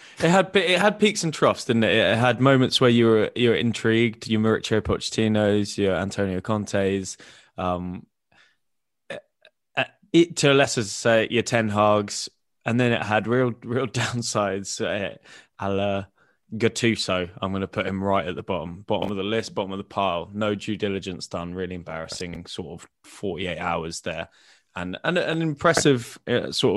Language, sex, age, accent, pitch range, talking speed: English, male, 10-29, British, 95-120 Hz, 175 wpm